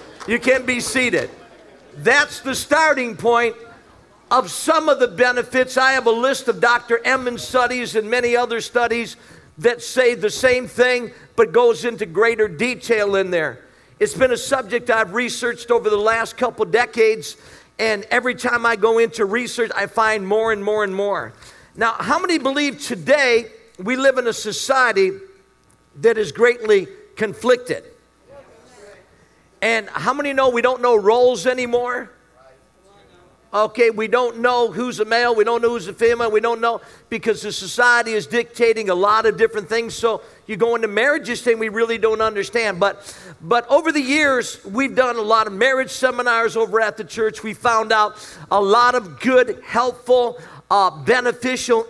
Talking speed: 170 wpm